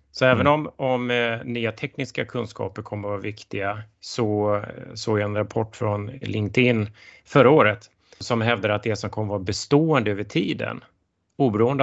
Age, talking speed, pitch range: 30-49, 155 wpm, 105-125 Hz